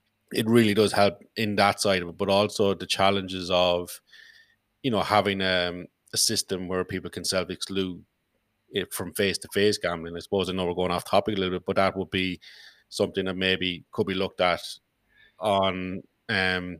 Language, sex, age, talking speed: English, male, 30-49, 195 wpm